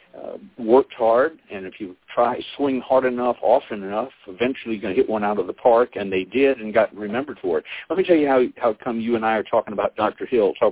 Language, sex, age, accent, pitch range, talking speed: English, male, 60-79, American, 100-130 Hz, 255 wpm